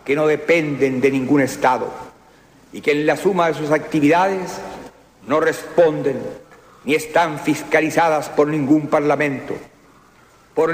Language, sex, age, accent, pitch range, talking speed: Spanish, male, 60-79, Mexican, 145-180 Hz, 130 wpm